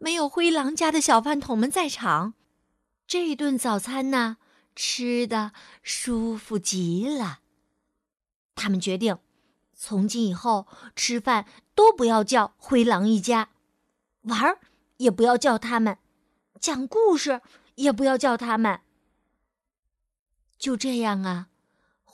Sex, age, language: female, 30-49, Chinese